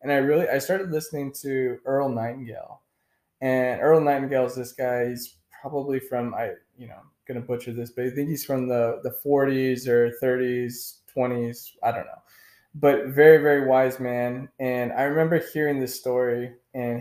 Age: 20-39